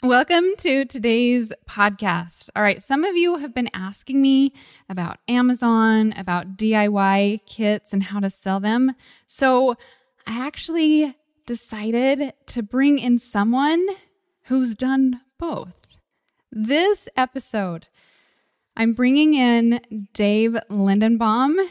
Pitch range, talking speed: 205-270 Hz, 115 wpm